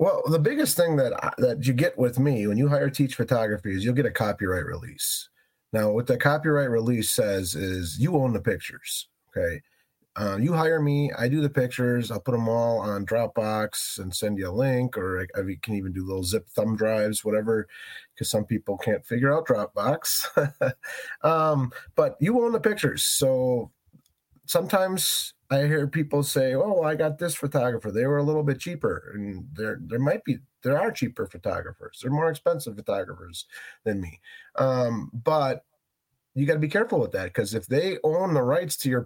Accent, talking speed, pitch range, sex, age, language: American, 195 wpm, 110-150 Hz, male, 30-49, English